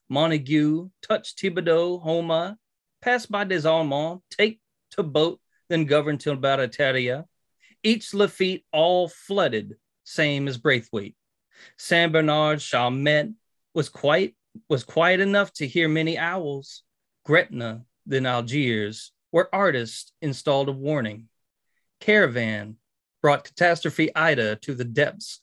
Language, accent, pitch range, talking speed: English, American, 120-165 Hz, 115 wpm